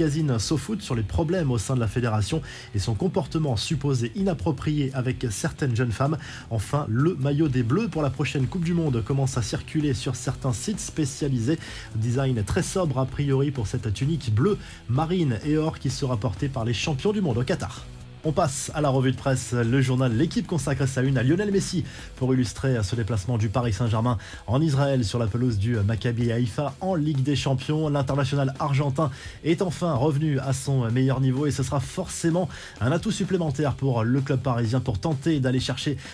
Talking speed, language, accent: 200 wpm, French, French